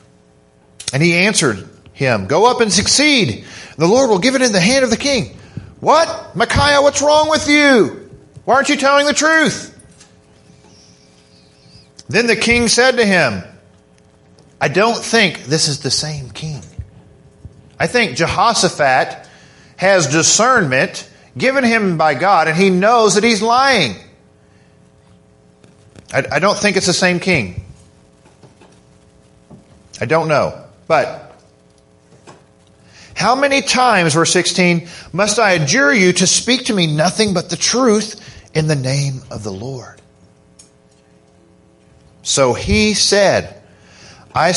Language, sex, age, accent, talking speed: English, male, 40-59, American, 135 wpm